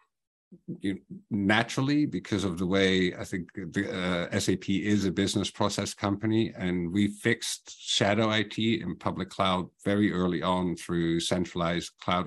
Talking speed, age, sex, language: 140 wpm, 50-69, male, English